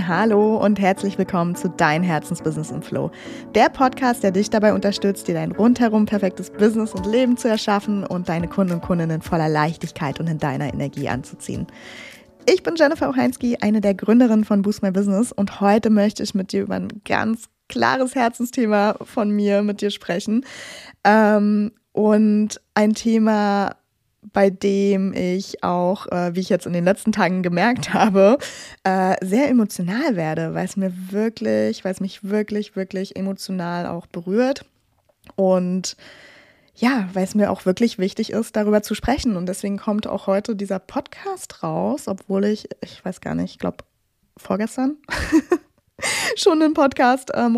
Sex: female